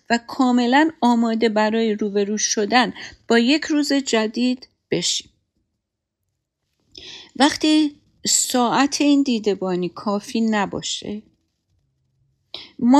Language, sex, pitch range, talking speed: Persian, female, 195-250 Hz, 90 wpm